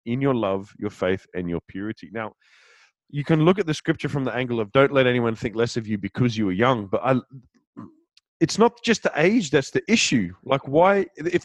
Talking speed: 225 wpm